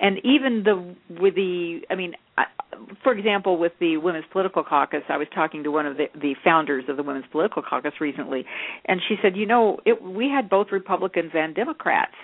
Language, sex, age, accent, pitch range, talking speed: English, female, 50-69, American, 155-200 Hz, 200 wpm